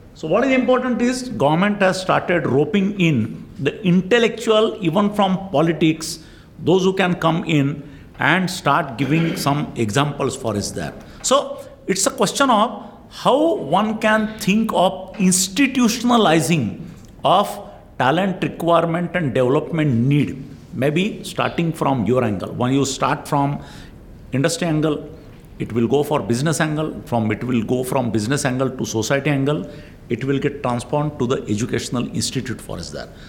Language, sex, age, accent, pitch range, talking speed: English, male, 50-69, Indian, 125-190 Hz, 150 wpm